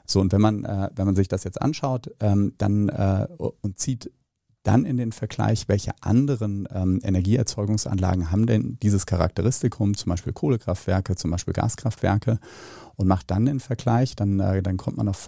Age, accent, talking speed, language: 40-59, German, 155 wpm, German